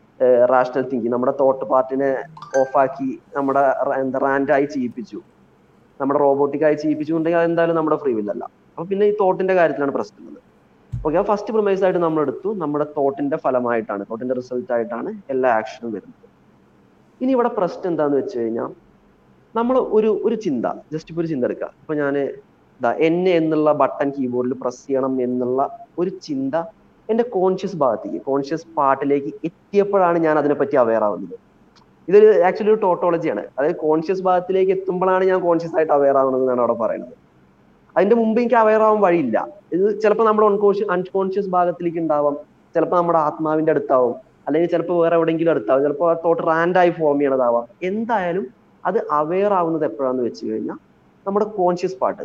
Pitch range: 135-185 Hz